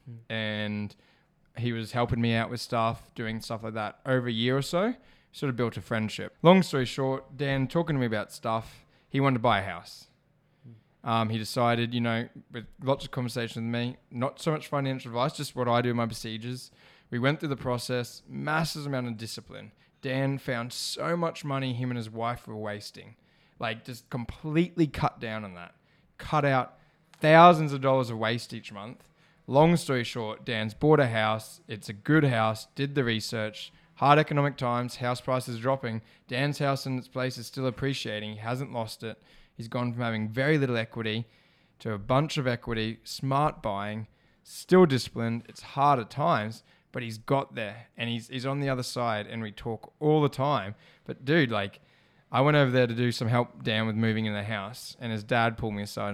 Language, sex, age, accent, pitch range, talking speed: English, male, 10-29, Australian, 110-140 Hz, 200 wpm